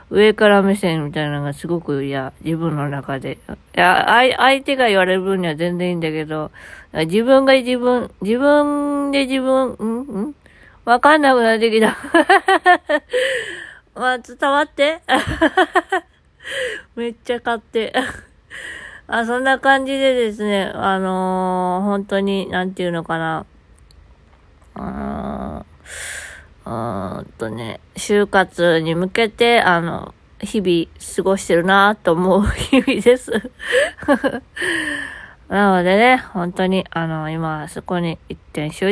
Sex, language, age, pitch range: female, Japanese, 20-39, 165-235 Hz